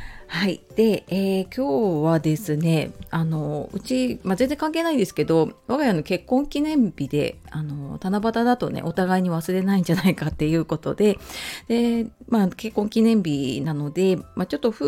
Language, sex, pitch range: Japanese, female, 155-215 Hz